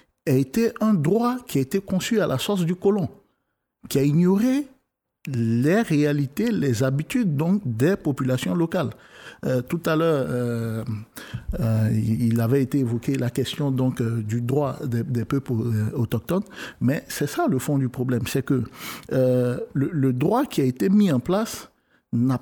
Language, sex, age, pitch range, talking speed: French, male, 50-69, 125-195 Hz, 165 wpm